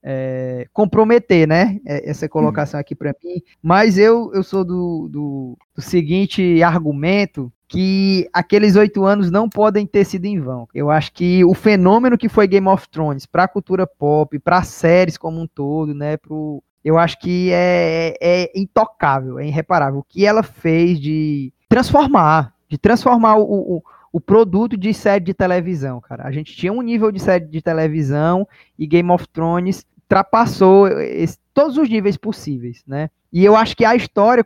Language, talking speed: Portuguese, 170 wpm